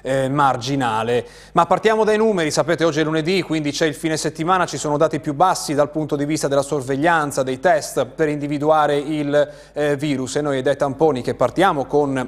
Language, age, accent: Italian, 30-49, native